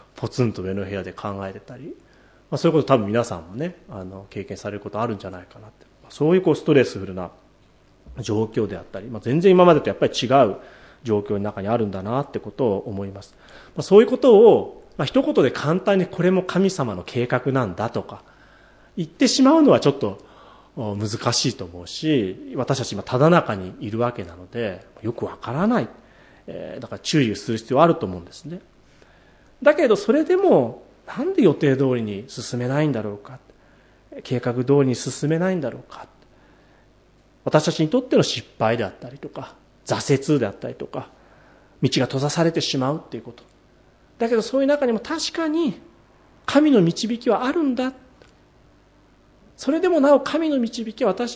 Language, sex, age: Japanese, male, 30-49